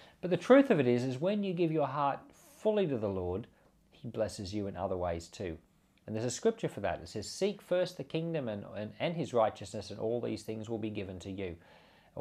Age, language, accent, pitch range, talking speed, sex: 40-59, English, Australian, 105-155 Hz, 245 wpm, male